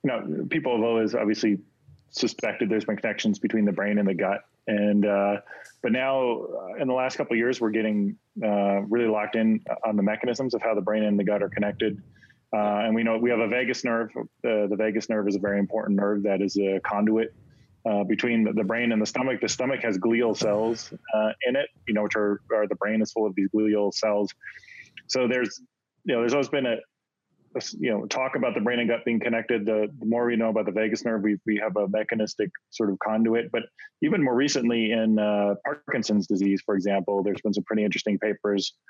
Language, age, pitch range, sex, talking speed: English, 30-49, 105-115 Hz, male, 225 wpm